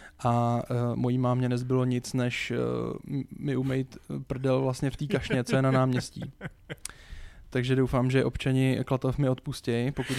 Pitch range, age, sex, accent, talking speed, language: 130-145 Hz, 20-39, male, native, 160 wpm, Czech